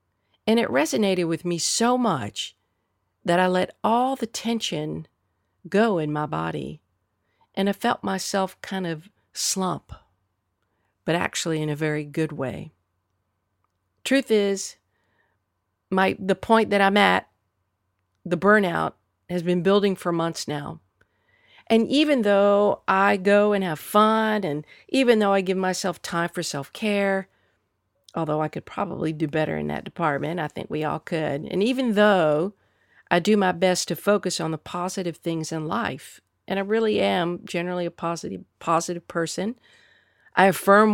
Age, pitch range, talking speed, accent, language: 50-69, 145-200 Hz, 150 wpm, American, English